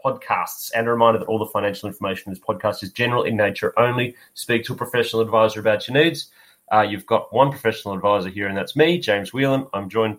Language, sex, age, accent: English, male, 30-49, Australian